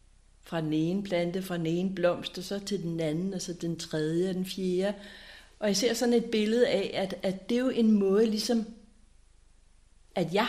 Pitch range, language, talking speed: 180-220 Hz, Danish, 205 wpm